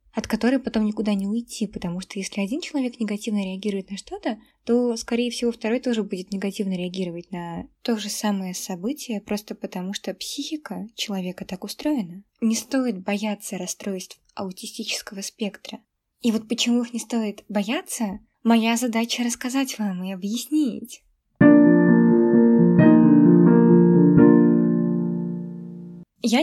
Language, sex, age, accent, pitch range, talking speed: Russian, female, 20-39, native, 195-240 Hz, 125 wpm